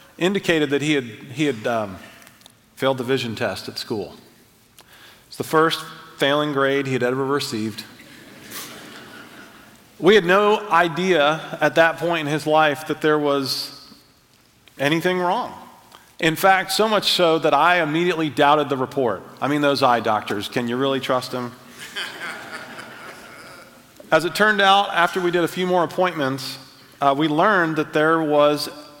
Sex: male